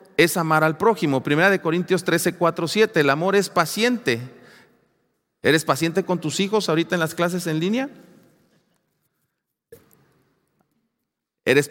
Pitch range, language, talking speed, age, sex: 170-225 Hz, Spanish, 135 wpm, 40-59, male